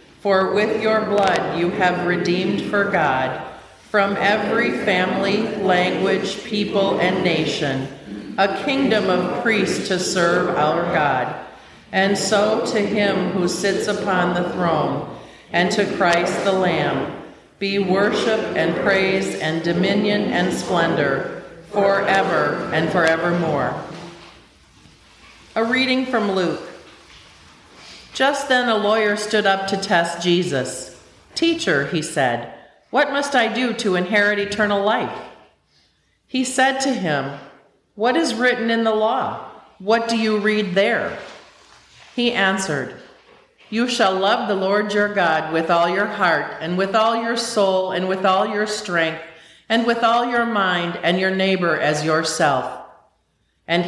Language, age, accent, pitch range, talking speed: English, 40-59, American, 175-215 Hz, 135 wpm